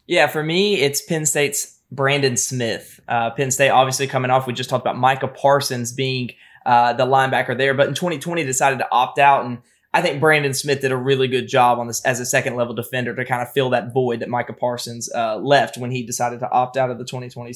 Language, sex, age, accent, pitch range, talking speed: English, male, 20-39, American, 130-150 Hz, 235 wpm